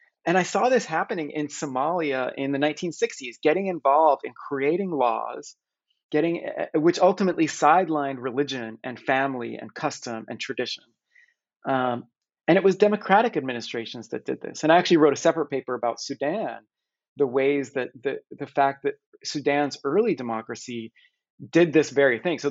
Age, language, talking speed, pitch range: 30-49, English, 155 wpm, 125-165 Hz